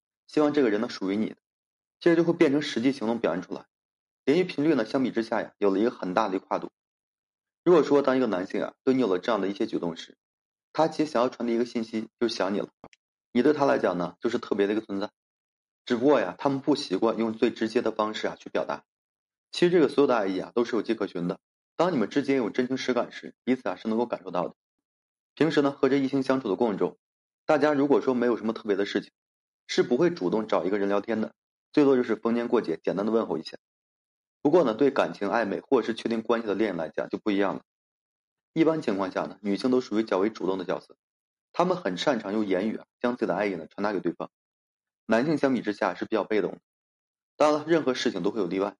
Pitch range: 105-135 Hz